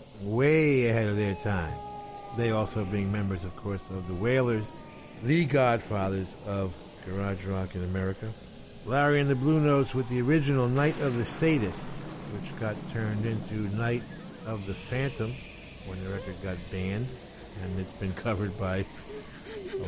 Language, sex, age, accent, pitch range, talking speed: Spanish, male, 50-69, American, 95-130 Hz, 155 wpm